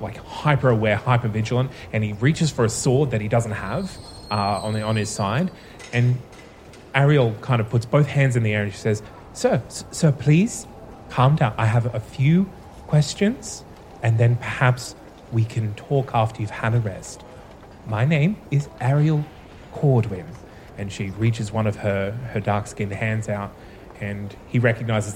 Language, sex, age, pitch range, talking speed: English, male, 20-39, 105-130 Hz, 180 wpm